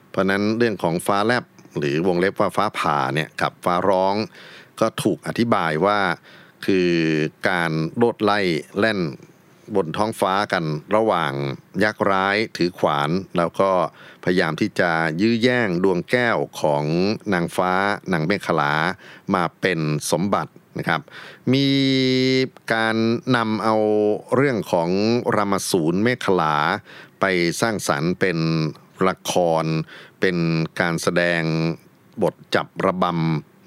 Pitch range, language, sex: 80-105 Hz, Thai, male